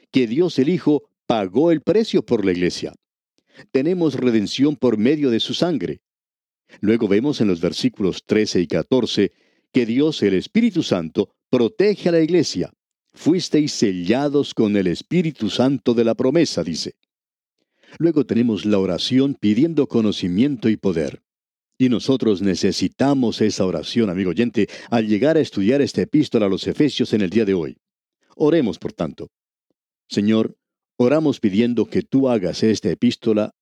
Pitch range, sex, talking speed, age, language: 100-140 Hz, male, 150 wpm, 50-69, Spanish